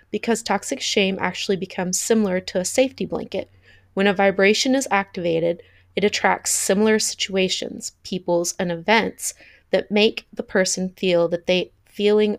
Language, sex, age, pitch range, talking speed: English, female, 30-49, 180-215 Hz, 145 wpm